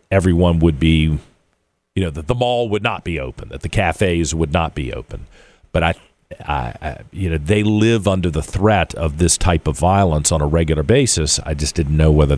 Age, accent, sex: 50-69, American, male